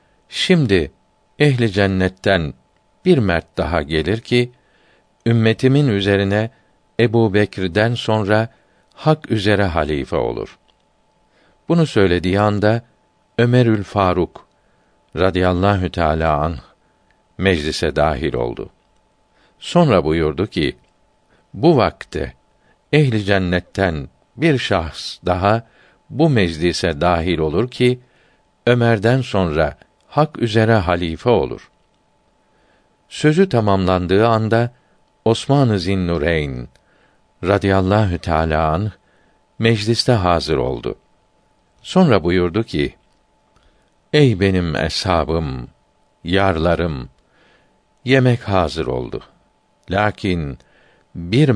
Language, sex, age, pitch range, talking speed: Turkish, male, 50-69, 85-115 Hz, 85 wpm